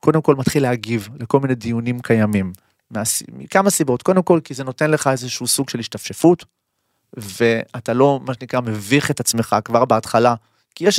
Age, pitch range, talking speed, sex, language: 30-49, 115-155 Hz, 170 wpm, male, Hebrew